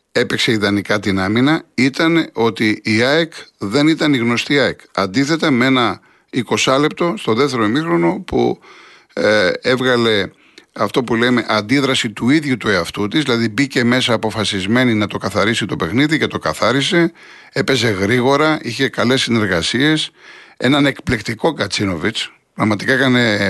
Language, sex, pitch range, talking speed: Greek, male, 105-130 Hz, 140 wpm